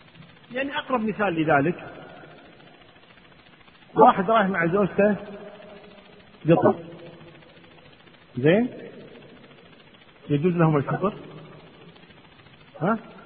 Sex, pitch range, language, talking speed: male, 165-215 Hz, Arabic, 65 wpm